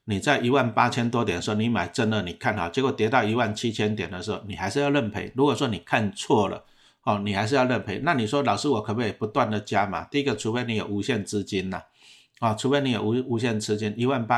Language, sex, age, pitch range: Chinese, male, 60-79, 105-125 Hz